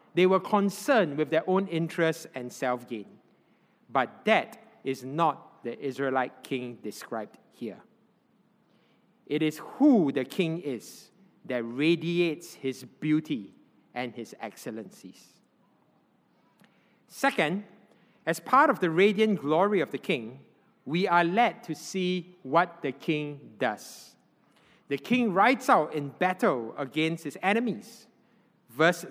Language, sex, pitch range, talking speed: English, male, 150-220 Hz, 125 wpm